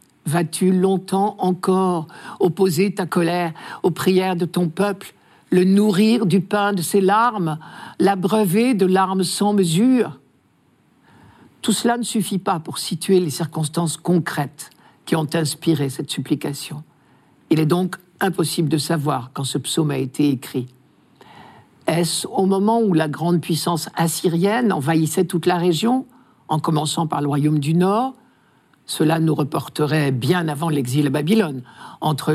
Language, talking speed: French, 145 wpm